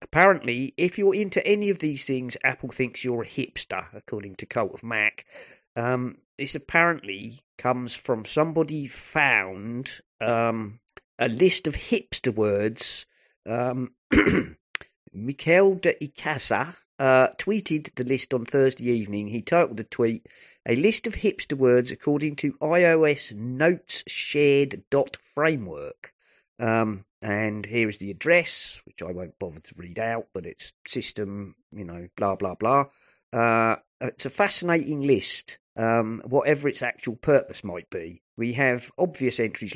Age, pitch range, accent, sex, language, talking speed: 40-59, 110-140 Hz, British, male, English, 145 wpm